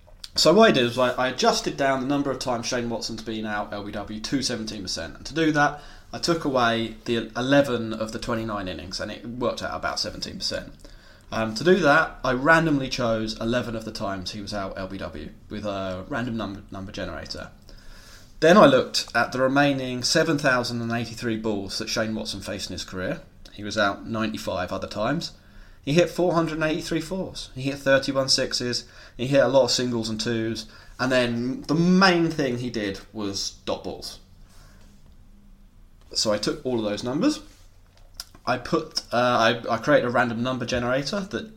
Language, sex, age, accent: English, male, 20-39, British